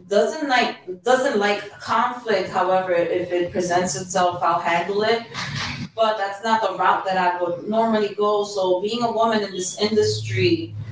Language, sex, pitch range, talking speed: English, female, 175-210 Hz, 165 wpm